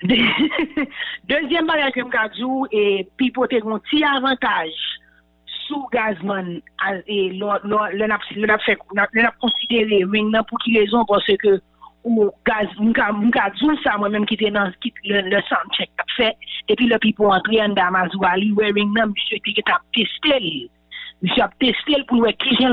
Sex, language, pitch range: female, English, 190-240 Hz